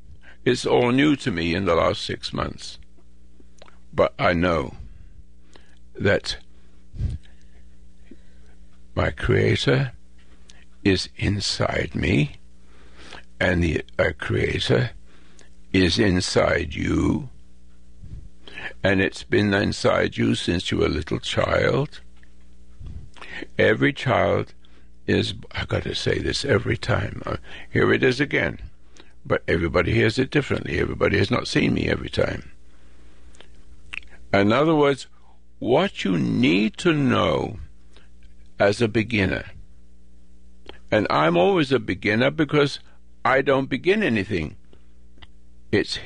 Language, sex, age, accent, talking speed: English, male, 60-79, American, 110 wpm